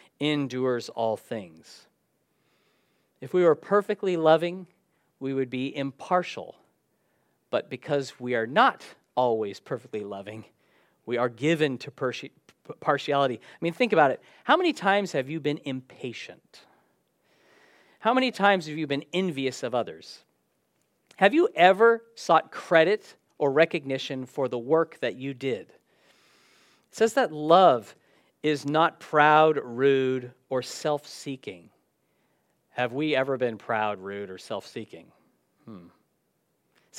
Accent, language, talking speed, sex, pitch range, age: American, English, 125 wpm, male, 135-180 Hz, 40-59